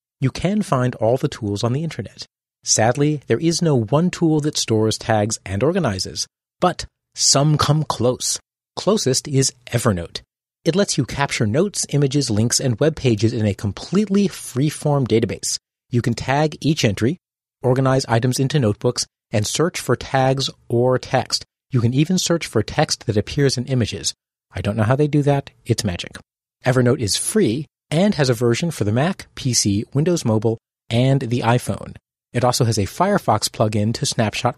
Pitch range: 115-150 Hz